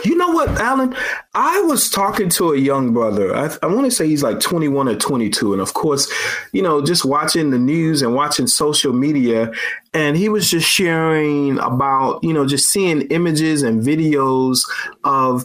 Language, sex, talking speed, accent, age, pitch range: English, male, 185 wpm, American, 30-49, 130-170 Hz